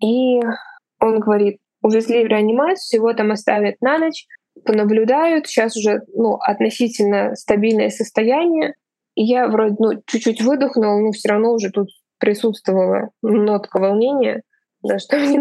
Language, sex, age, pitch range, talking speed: Russian, female, 20-39, 200-235 Hz, 135 wpm